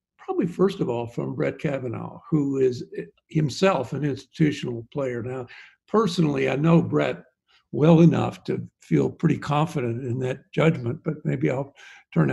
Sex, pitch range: male, 140-175 Hz